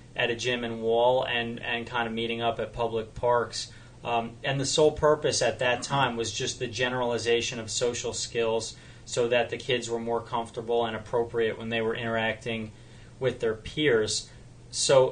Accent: American